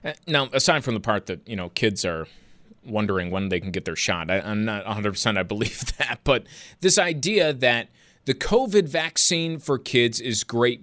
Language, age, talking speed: English, 30-49, 195 wpm